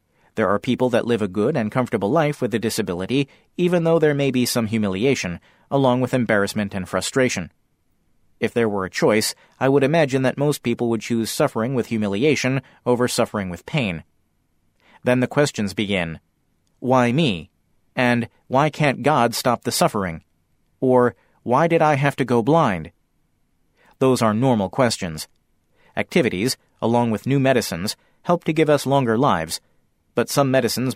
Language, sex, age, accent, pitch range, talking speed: English, male, 40-59, American, 105-140 Hz, 165 wpm